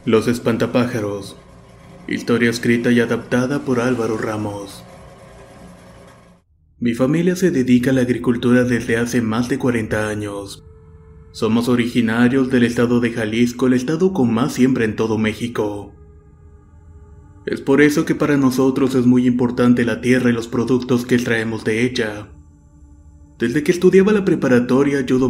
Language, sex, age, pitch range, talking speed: Spanish, male, 30-49, 110-125 Hz, 140 wpm